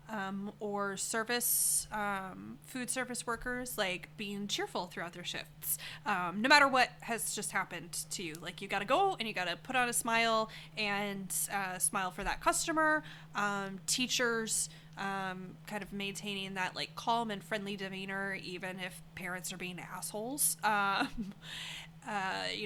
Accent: American